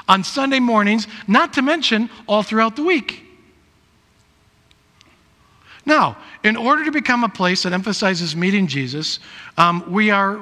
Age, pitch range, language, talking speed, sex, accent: 50-69, 175-230 Hz, English, 140 wpm, male, American